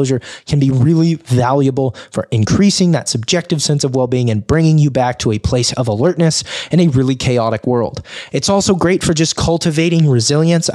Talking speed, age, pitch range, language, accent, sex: 185 wpm, 20-39, 120-160 Hz, English, American, male